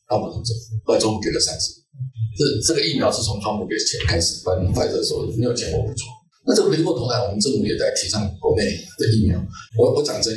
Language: Chinese